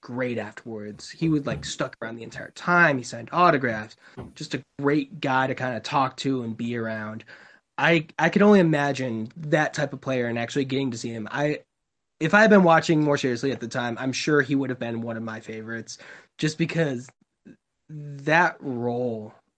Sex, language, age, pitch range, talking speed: male, English, 20-39, 115-155 Hz, 200 wpm